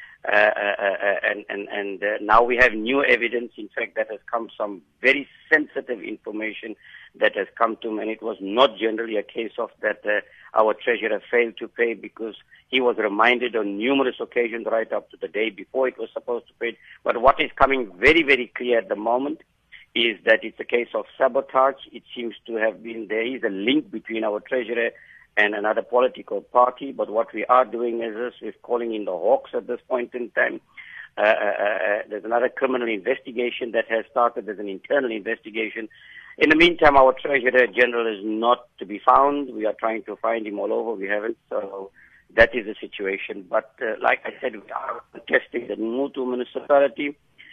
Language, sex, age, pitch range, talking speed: English, male, 50-69, 110-130 Hz, 200 wpm